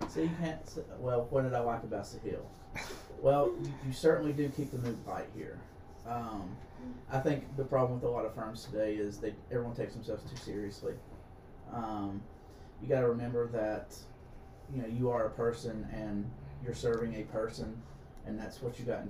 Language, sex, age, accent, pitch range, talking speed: English, male, 30-49, American, 105-125 Hz, 190 wpm